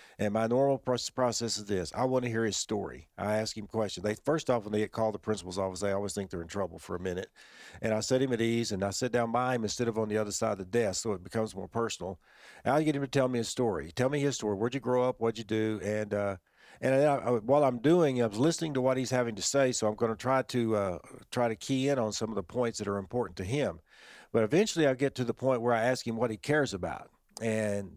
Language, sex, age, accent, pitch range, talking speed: English, male, 50-69, American, 110-135 Hz, 290 wpm